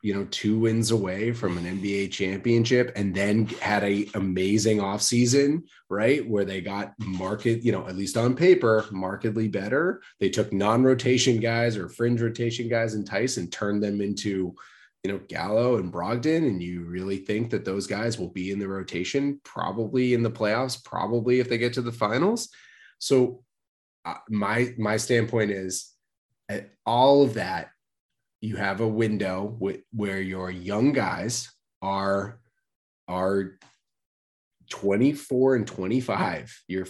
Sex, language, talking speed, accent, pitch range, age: male, English, 155 wpm, American, 100-125 Hz, 20-39